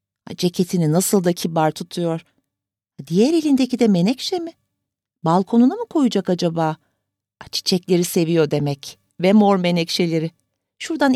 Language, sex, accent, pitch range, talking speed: Turkish, female, native, 170-240 Hz, 115 wpm